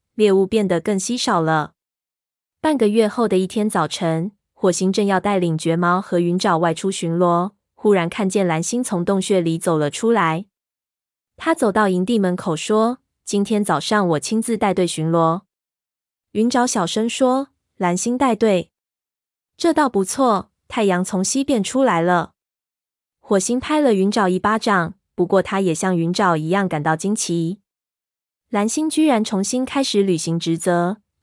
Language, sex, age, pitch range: Chinese, female, 20-39, 170-220 Hz